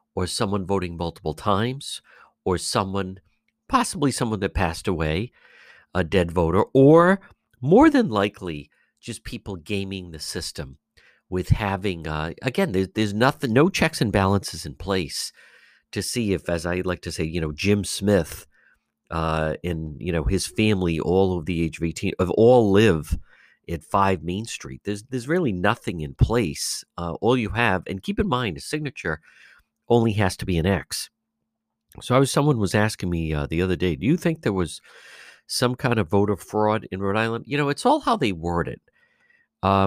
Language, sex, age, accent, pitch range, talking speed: English, male, 50-69, American, 85-120 Hz, 185 wpm